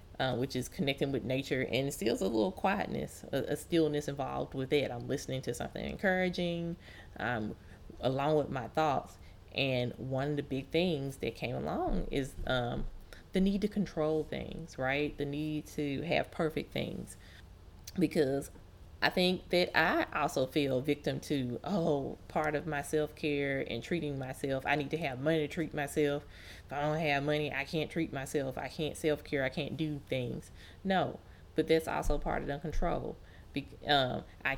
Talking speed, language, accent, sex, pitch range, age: 175 wpm, English, American, female, 110-155 Hz, 20-39